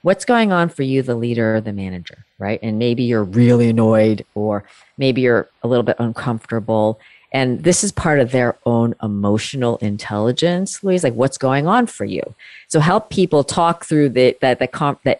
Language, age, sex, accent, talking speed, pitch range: English, 40-59, female, American, 190 wpm, 115-145 Hz